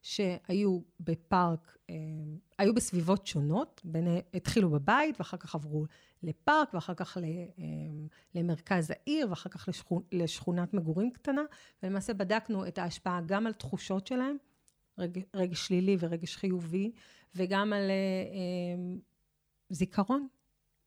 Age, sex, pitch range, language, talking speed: 30-49, female, 170-205 Hz, Hebrew, 110 wpm